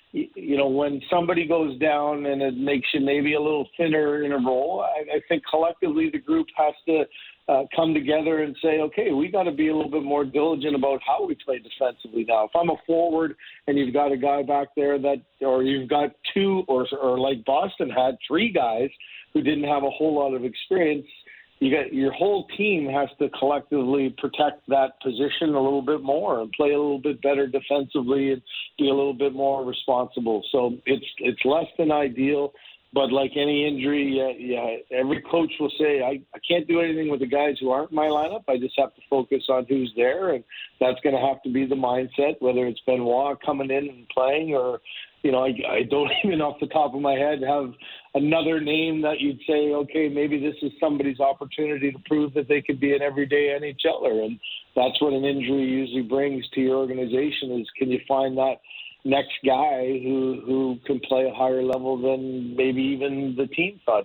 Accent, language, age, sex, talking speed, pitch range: American, English, 50-69, male, 210 wpm, 130-150 Hz